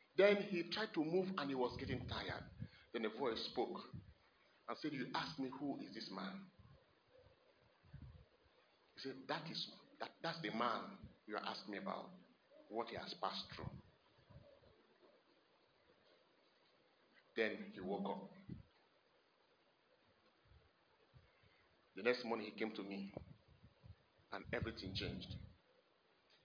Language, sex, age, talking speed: English, male, 50-69, 125 wpm